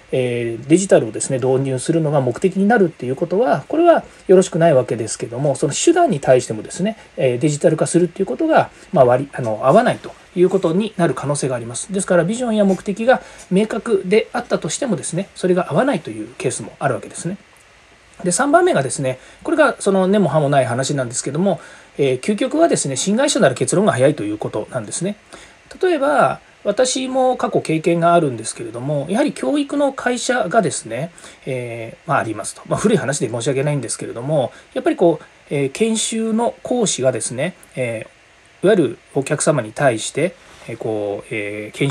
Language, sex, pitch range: Japanese, male, 135-205 Hz